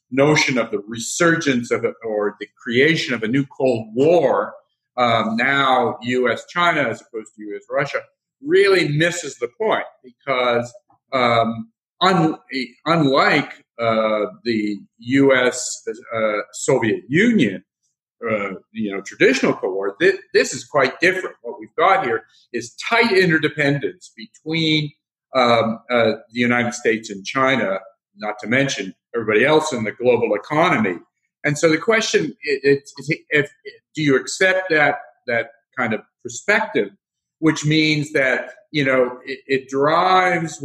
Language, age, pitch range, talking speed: English, 50-69, 120-165 Hz, 140 wpm